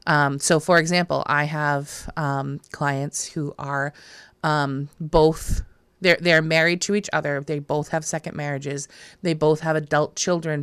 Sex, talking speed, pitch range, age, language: female, 160 wpm, 150-170 Hz, 30-49, English